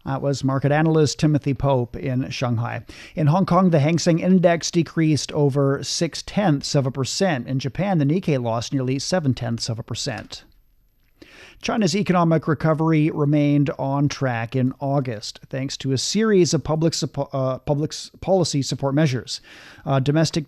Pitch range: 135-165 Hz